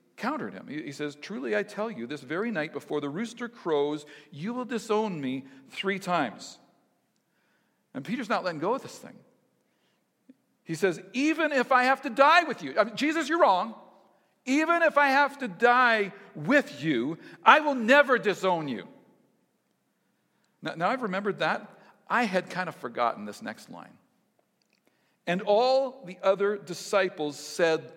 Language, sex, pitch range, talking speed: English, male, 165-250 Hz, 160 wpm